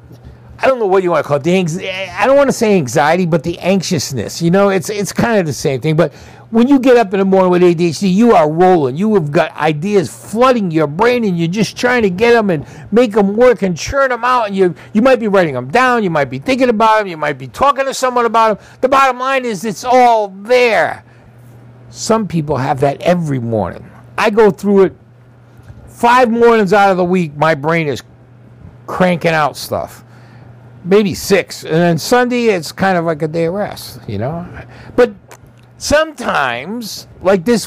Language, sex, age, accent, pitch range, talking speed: English, male, 60-79, American, 145-235 Hz, 210 wpm